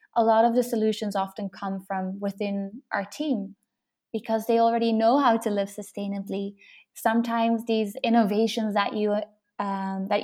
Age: 20-39